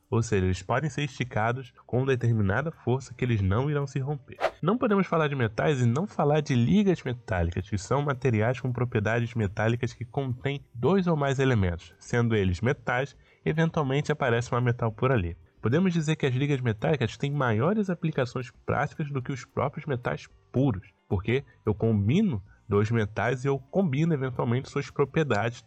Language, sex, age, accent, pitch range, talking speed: Portuguese, male, 10-29, Brazilian, 100-140 Hz, 175 wpm